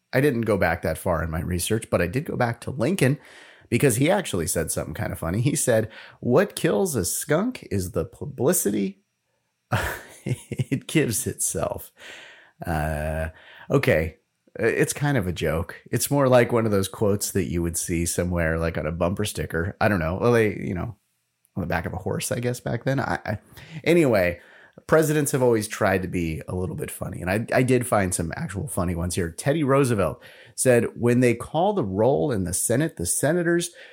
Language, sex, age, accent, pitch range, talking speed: English, male, 30-49, American, 95-145 Hz, 200 wpm